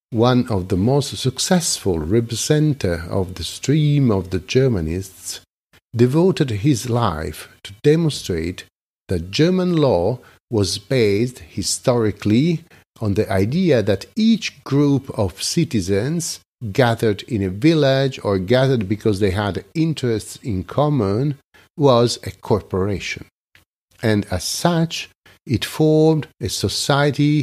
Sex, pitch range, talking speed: male, 95-140 Hz, 115 wpm